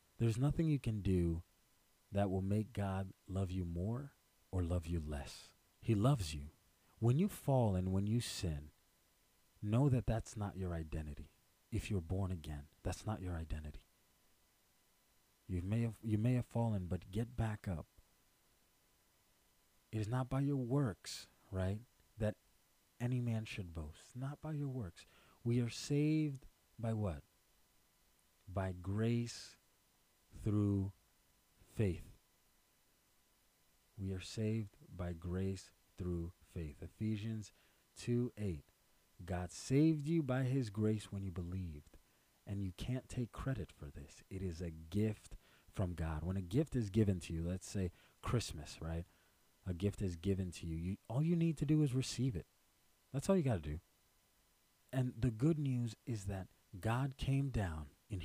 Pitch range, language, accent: 90-120 Hz, English, American